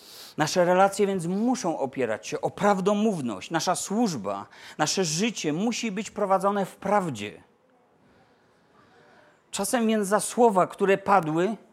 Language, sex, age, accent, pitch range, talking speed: Polish, male, 40-59, native, 150-195 Hz, 120 wpm